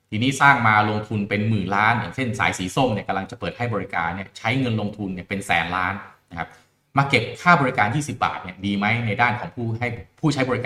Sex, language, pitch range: male, Thai, 100-140 Hz